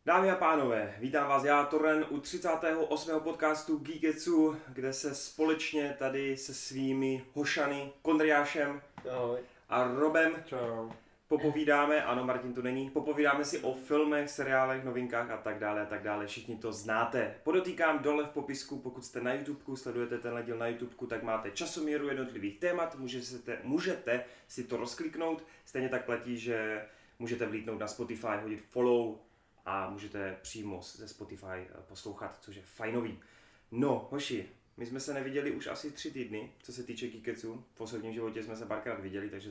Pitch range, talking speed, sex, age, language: 115-150 Hz, 160 wpm, male, 20-39, Czech